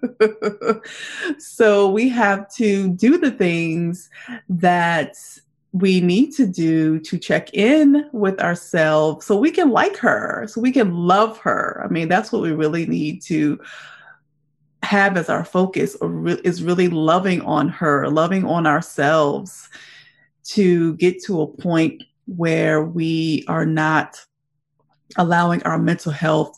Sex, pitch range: female, 155-210 Hz